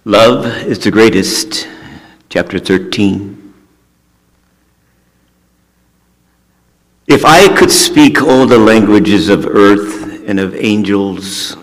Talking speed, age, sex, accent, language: 95 wpm, 50-69, male, American, English